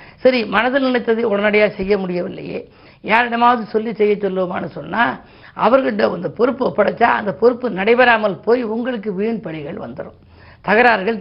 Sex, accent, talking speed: female, native, 130 wpm